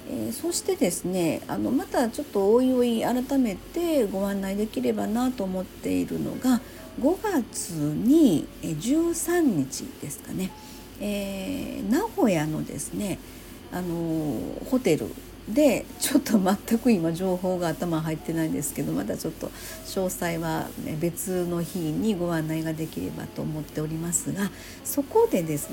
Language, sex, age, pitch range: Japanese, female, 50-69, 165-275 Hz